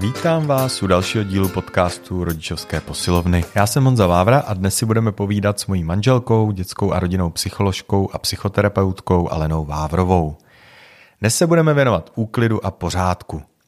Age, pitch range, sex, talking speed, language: 30-49, 90-115 Hz, male, 155 wpm, Czech